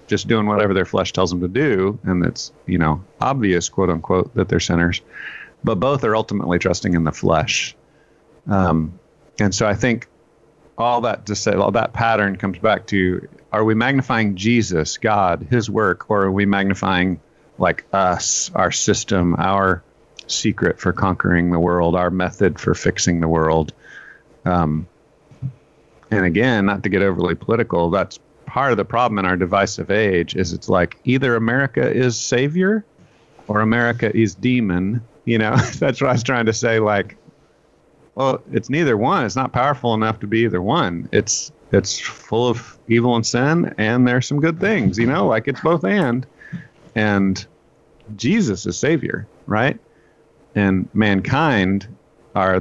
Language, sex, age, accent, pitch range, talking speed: English, male, 40-59, American, 95-120 Hz, 165 wpm